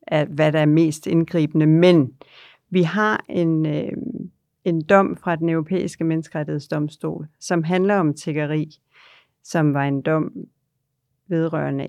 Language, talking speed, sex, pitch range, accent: Danish, 130 wpm, female, 150-180 Hz, native